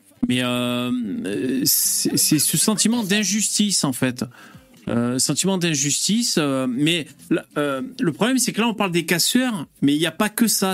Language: French